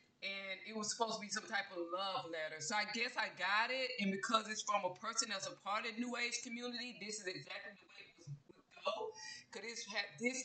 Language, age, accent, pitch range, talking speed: English, 20-39, American, 190-245 Hz, 235 wpm